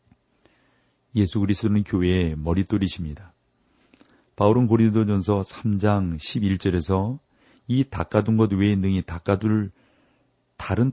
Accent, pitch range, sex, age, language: native, 90-120 Hz, male, 40-59, Korean